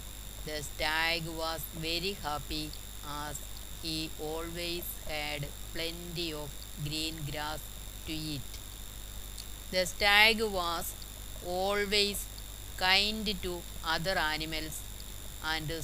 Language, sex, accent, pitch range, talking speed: Malayalam, female, native, 105-170 Hz, 90 wpm